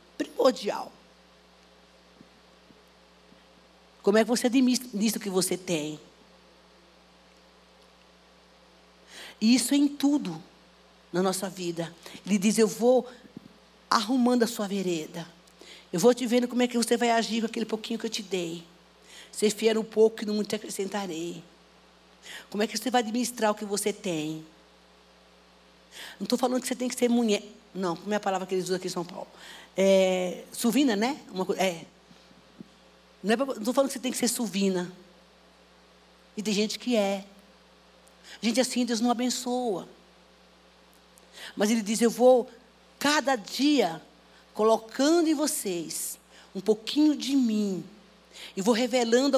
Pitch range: 170-245 Hz